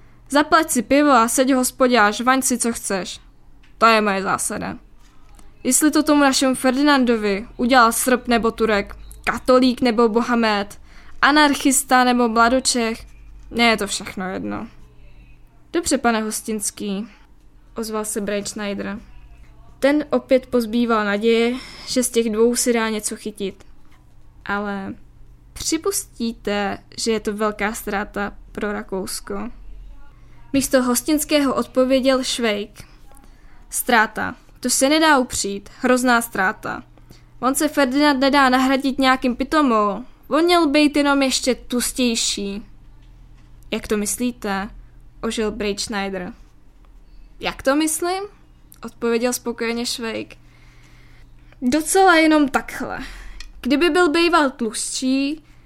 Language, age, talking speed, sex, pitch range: Czech, 10-29, 110 wpm, female, 210-265 Hz